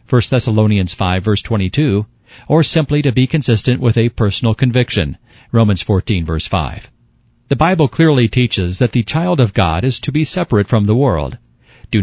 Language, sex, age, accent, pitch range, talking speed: English, male, 50-69, American, 105-135 Hz, 175 wpm